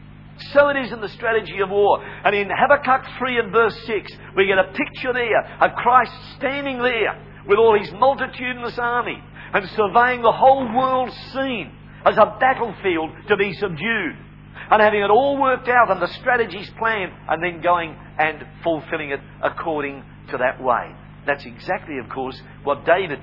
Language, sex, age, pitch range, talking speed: English, male, 50-69, 155-240 Hz, 175 wpm